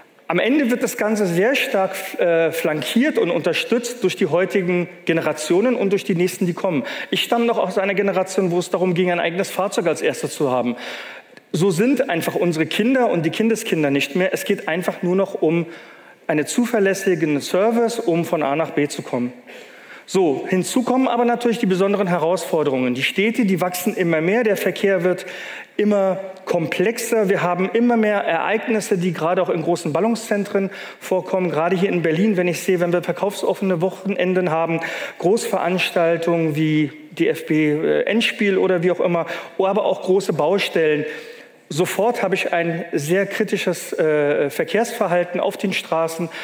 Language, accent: German, German